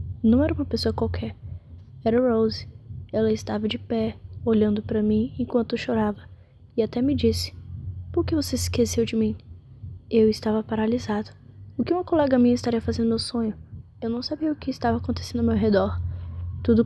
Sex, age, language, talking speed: female, 10-29, Portuguese, 180 wpm